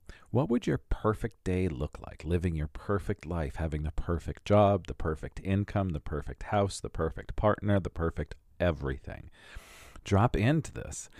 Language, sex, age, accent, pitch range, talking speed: English, male, 40-59, American, 80-100 Hz, 160 wpm